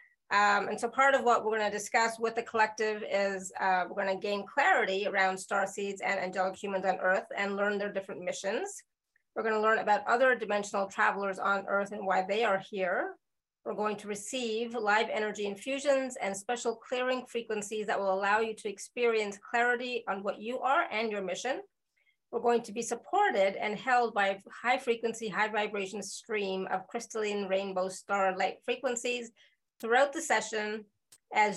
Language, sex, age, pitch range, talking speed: English, female, 30-49, 195-235 Hz, 180 wpm